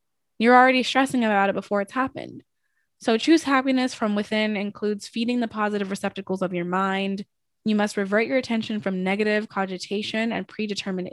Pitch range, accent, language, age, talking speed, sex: 185-230 Hz, American, English, 20-39, 165 wpm, female